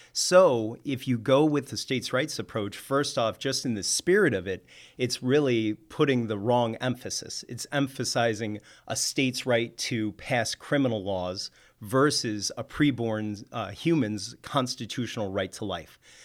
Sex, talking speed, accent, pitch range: male, 150 wpm, American, 105-130 Hz